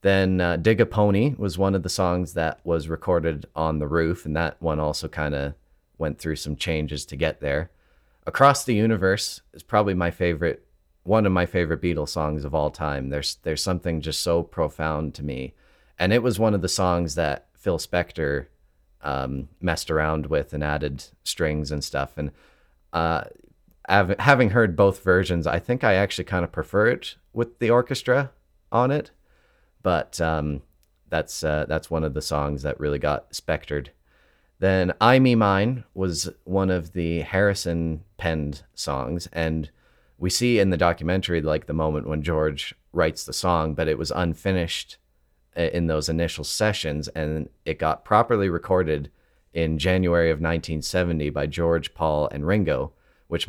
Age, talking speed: 30-49, 170 wpm